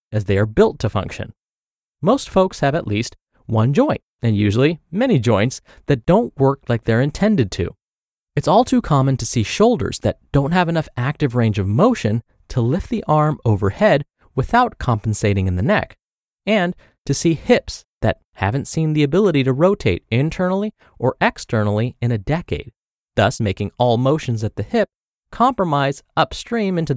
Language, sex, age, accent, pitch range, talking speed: English, male, 30-49, American, 115-170 Hz, 170 wpm